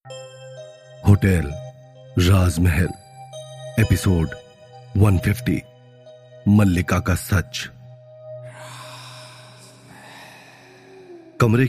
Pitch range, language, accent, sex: 90-110 Hz, Hindi, native, male